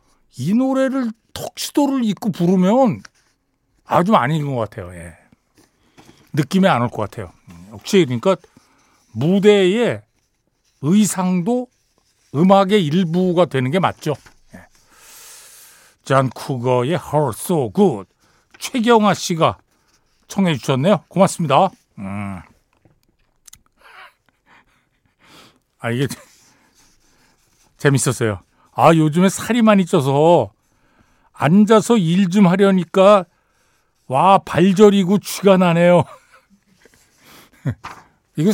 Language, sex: Korean, male